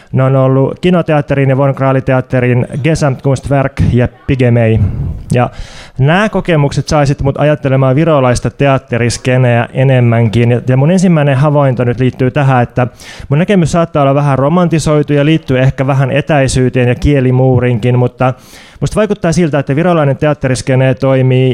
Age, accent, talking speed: 20-39, native, 130 wpm